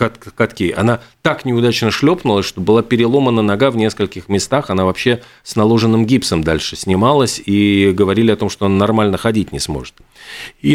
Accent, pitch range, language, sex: native, 100-135 Hz, Russian, male